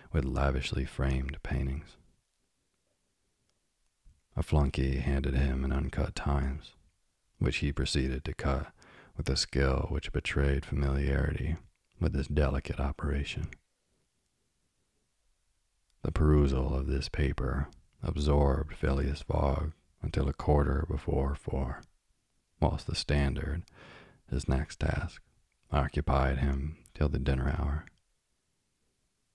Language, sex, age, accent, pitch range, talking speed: English, male, 40-59, American, 70-80 Hz, 105 wpm